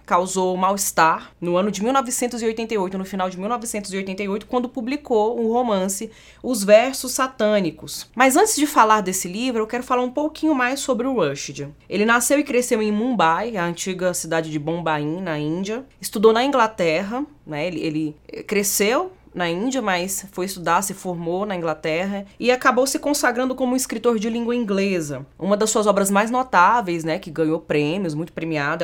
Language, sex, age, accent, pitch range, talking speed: Portuguese, female, 20-39, Brazilian, 165-225 Hz, 170 wpm